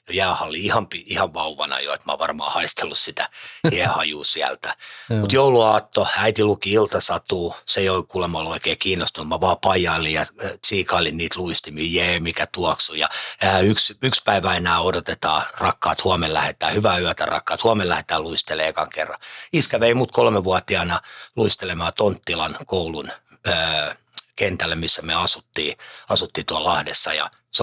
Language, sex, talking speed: Finnish, male, 150 wpm